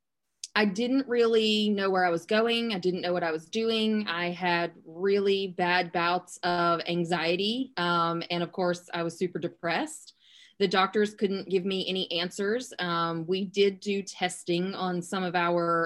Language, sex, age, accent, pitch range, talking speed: English, female, 20-39, American, 175-205 Hz, 175 wpm